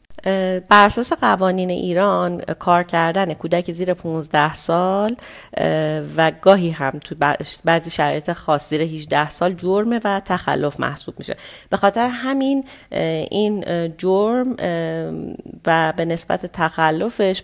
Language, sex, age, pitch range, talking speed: Persian, female, 30-49, 155-195 Hz, 115 wpm